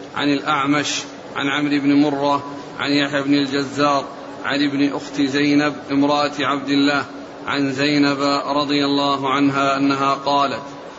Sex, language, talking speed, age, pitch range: male, Arabic, 130 wpm, 40-59, 145-150 Hz